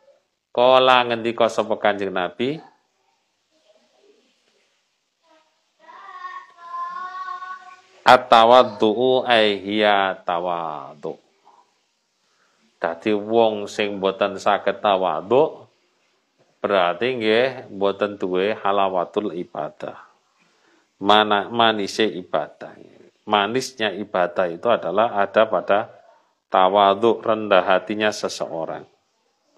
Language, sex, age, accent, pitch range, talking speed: Indonesian, male, 40-59, native, 110-150 Hz, 70 wpm